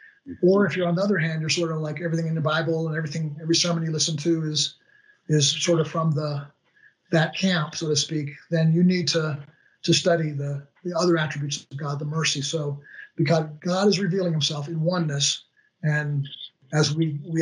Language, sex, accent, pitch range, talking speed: English, male, American, 150-175 Hz, 205 wpm